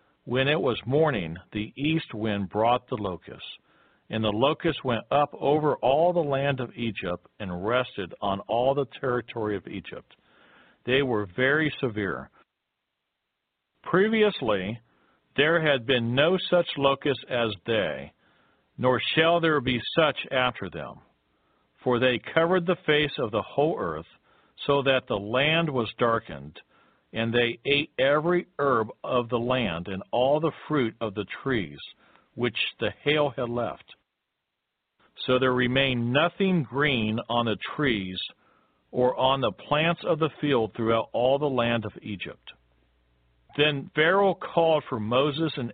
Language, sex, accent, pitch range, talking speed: English, male, American, 110-150 Hz, 145 wpm